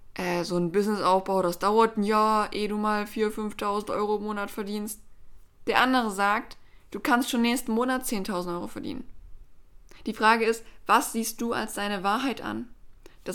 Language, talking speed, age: German, 170 wpm, 20-39